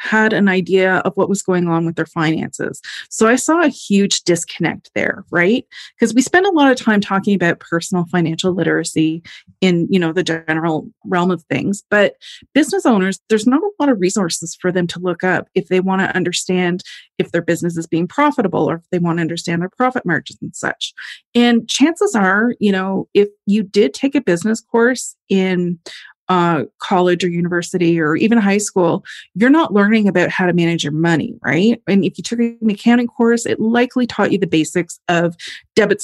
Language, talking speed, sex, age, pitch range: English, 200 wpm, female, 30-49, 180-230 Hz